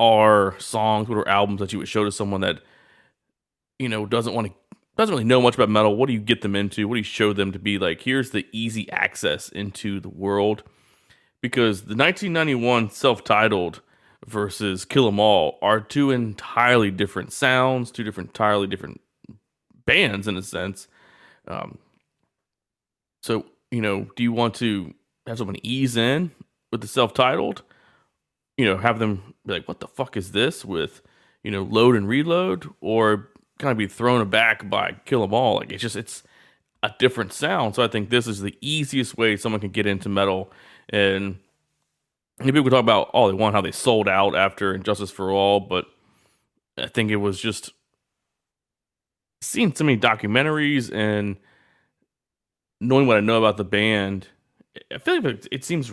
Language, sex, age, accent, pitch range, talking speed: English, male, 30-49, American, 100-120 Hz, 180 wpm